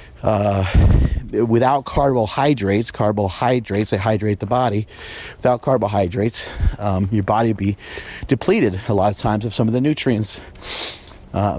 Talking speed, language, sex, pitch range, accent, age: 135 wpm, English, male, 100-130 Hz, American, 30-49